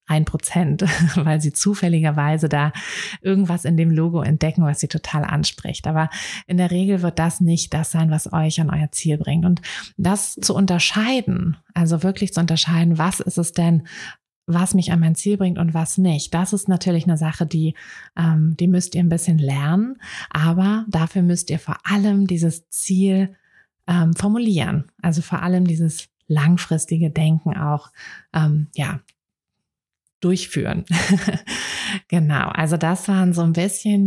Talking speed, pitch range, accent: 160 wpm, 160-185 Hz, German